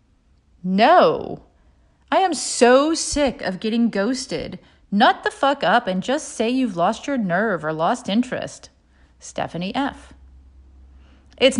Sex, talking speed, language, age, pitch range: female, 130 wpm, English, 30-49, 170-240 Hz